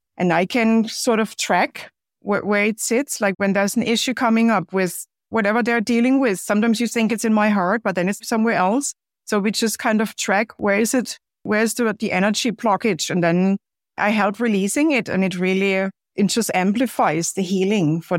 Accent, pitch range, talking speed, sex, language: German, 180-220 Hz, 210 wpm, female, English